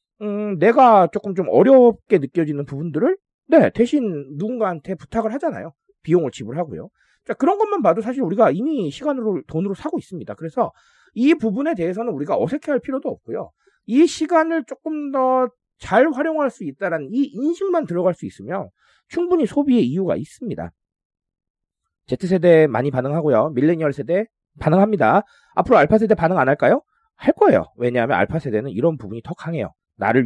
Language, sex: Korean, male